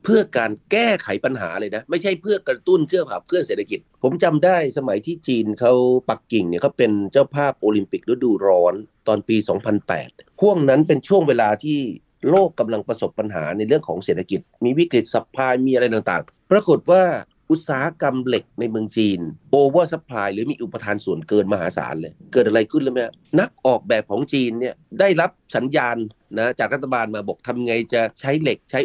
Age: 30-49